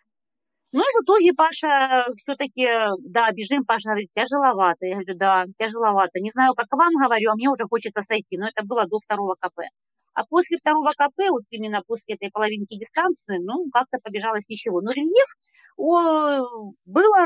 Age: 40-59